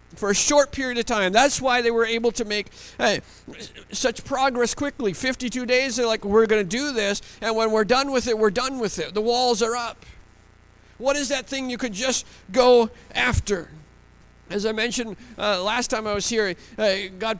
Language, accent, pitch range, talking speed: English, American, 160-225 Hz, 205 wpm